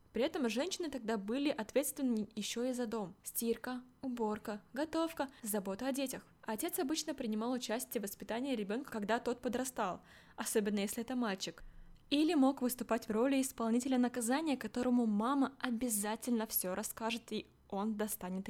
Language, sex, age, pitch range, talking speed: Russian, female, 20-39, 215-265 Hz, 145 wpm